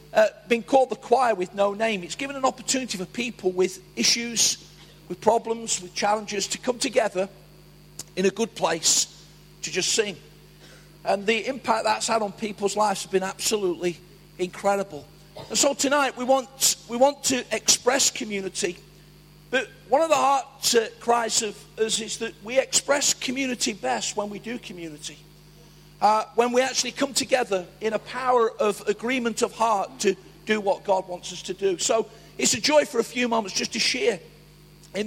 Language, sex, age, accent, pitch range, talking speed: English, male, 50-69, British, 190-255 Hz, 175 wpm